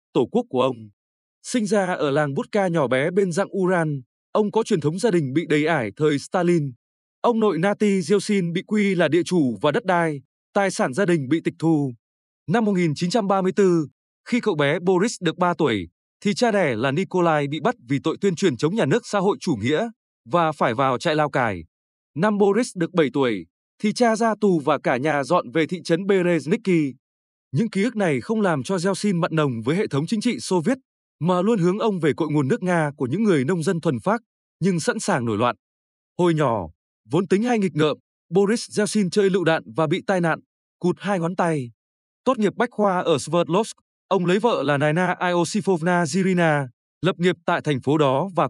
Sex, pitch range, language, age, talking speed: male, 150-200 Hz, Vietnamese, 20-39, 210 wpm